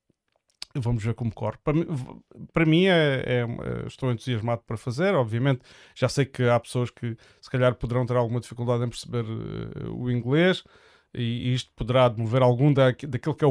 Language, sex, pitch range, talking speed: Portuguese, male, 115-135 Hz, 185 wpm